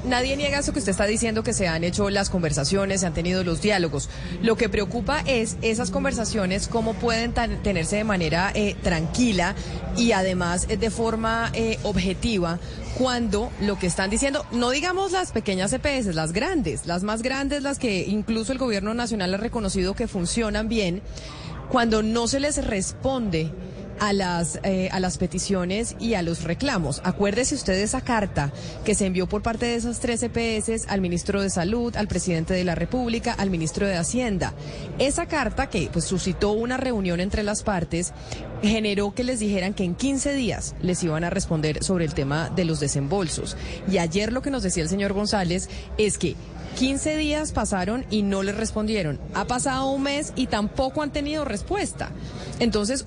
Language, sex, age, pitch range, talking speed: Spanish, female, 30-49, 180-235 Hz, 180 wpm